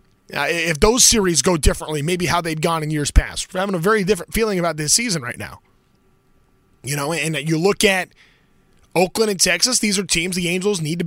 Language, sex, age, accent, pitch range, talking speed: English, male, 20-39, American, 165-205 Hz, 220 wpm